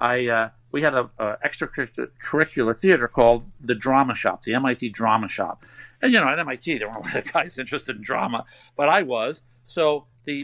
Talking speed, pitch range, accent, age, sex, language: 190 wpm, 120-150 Hz, American, 50-69, male, English